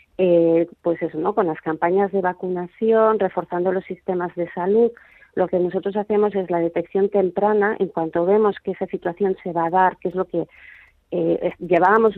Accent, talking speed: Spanish, 185 wpm